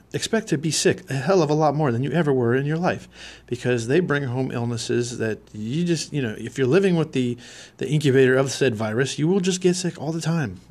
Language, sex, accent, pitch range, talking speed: English, male, American, 115-140 Hz, 250 wpm